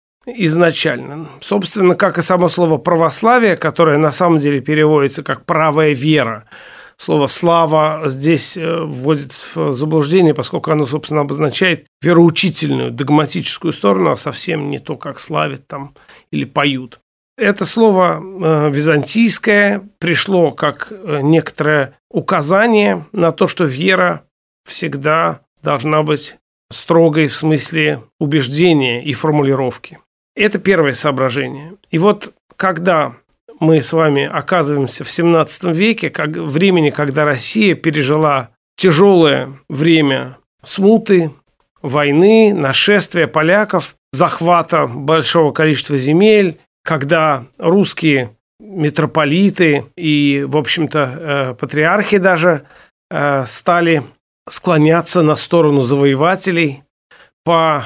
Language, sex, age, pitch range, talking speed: Russian, male, 40-59, 145-175 Hz, 100 wpm